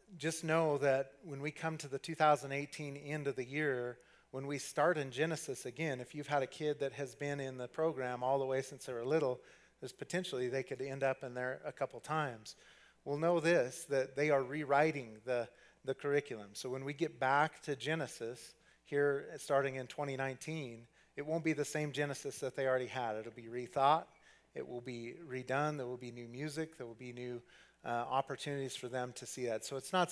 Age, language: 40-59, English